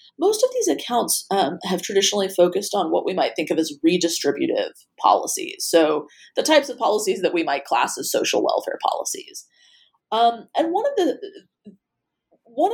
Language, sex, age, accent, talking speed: English, female, 30-49, American, 170 wpm